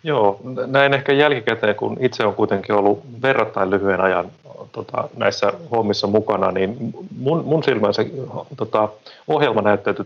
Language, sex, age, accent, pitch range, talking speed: Finnish, male, 30-49, native, 100-115 Hz, 135 wpm